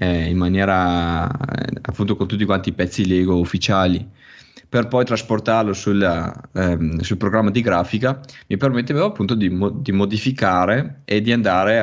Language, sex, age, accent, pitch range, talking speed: Italian, male, 20-39, native, 95-115 Hz, 135 wpm